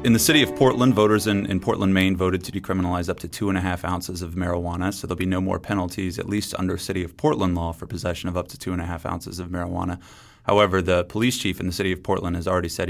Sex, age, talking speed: male, 30-49, 275 wpm